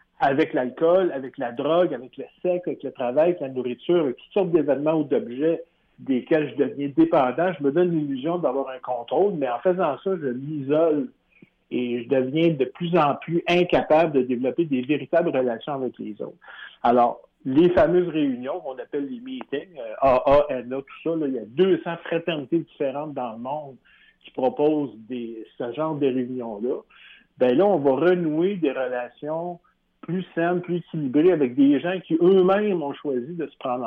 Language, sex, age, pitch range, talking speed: French, male, 60-79, 135-180 Hz, 180 wpm